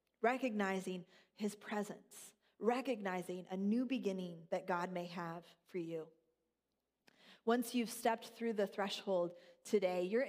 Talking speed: 120 wpm